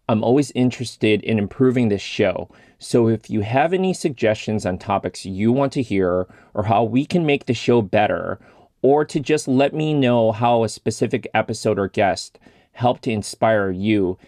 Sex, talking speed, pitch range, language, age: male, 180 wpm, 105-125 Hz, English, 30-49